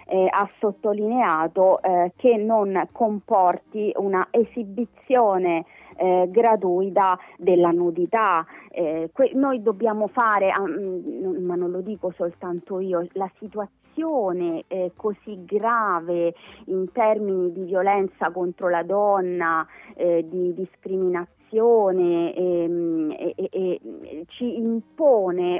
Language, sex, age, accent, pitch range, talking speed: Italian, female, 30-49, native, 180-230 Hz, 100 wpm